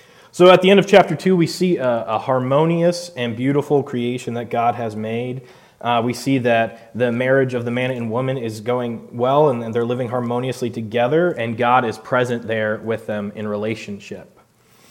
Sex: male